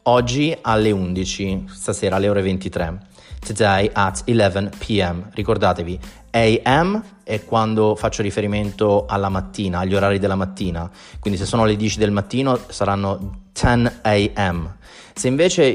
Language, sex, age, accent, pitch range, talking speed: Italian, male, 30-49, native, 100-120 Hz, 135 wpm